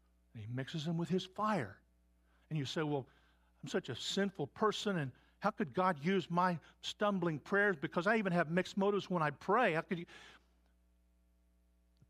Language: English